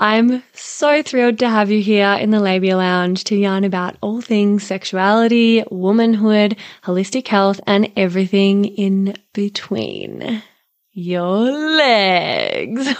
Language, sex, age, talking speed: English, female, 20-39, 120 wpm